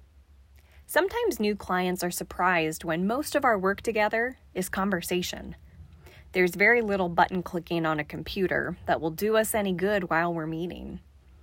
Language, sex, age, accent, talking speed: English, female, 20-39, American, 160 wpm